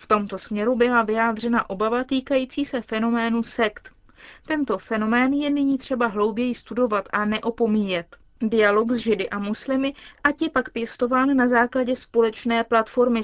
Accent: native